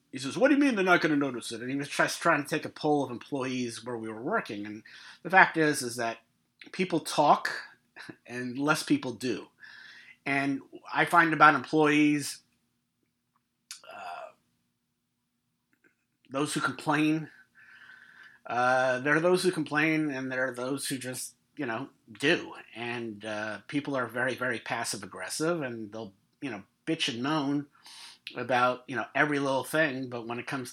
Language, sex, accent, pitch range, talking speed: English, male, American, 110-155 Hz, 170 wpm